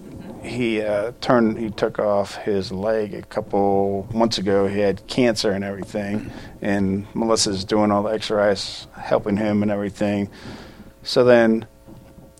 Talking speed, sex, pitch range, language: 140 wpm, male, 100-110 Hz, English